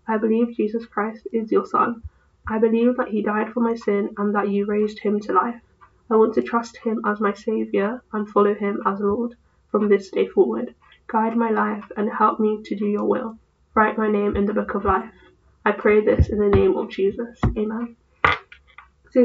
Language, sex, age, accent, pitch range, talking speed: English, female, 10-29, British, 205-230 Hz, 210 wpm